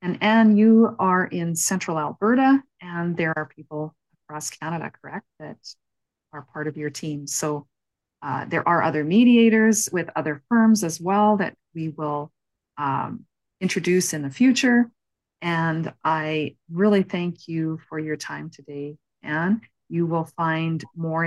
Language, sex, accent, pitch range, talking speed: English, female, American, 150-190 Hz, 150 wpm